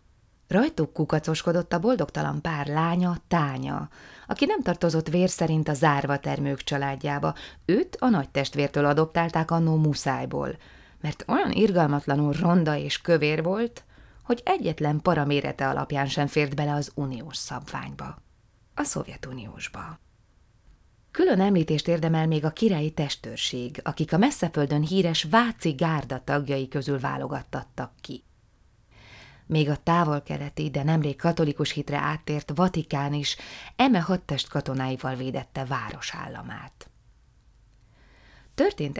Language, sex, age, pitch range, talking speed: Hungarian, female, 30-49, 140-170 Hz, 115 wpm